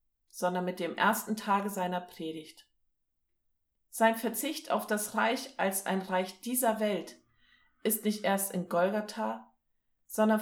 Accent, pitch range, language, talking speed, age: German, 170-220 Hz, German, 130 wpm, 40-59